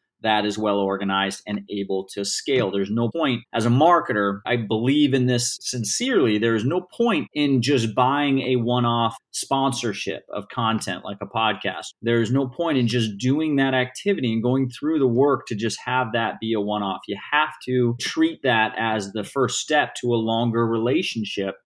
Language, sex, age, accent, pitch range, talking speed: English, male, 30-49, American, 115-130 Hz, 190 wpm